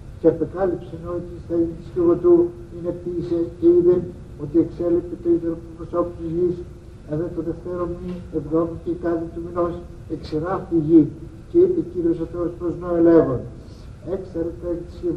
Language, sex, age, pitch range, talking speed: Greek, male, 60-79, 160-170 Hz, 125 wpm